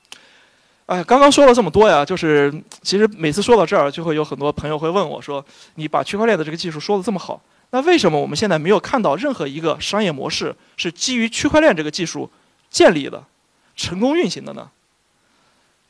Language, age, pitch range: Chinese, 20-39, 155-240 Hz